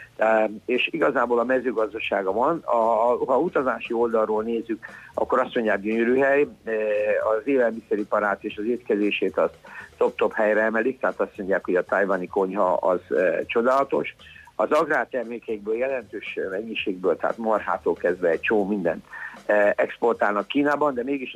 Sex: male